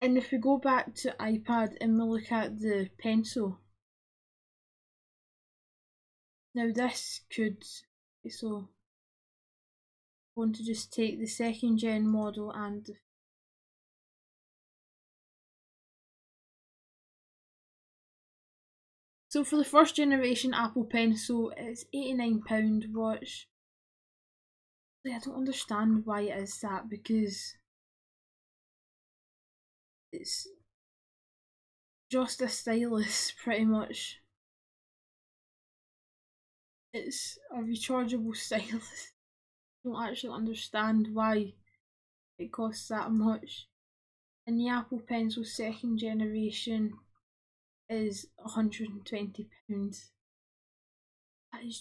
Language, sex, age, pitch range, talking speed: English, female, 10-29, 215-240 Hz, 90 wpm